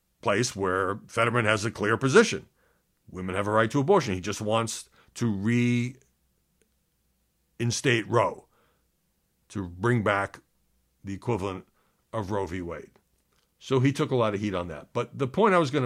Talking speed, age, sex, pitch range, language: 165 wpm, 60-79, male, 100-145 Hz, English